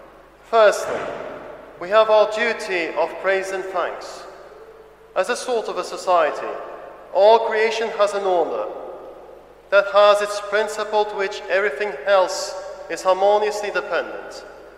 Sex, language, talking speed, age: male, English, 125 wpm, 40-59